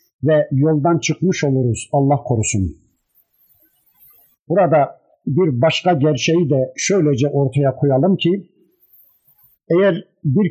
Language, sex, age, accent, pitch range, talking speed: Turkish, male, 50-69, native, 140-180 Hz, 95 wpm